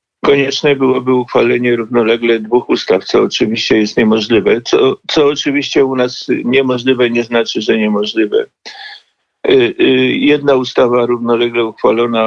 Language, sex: Polish, male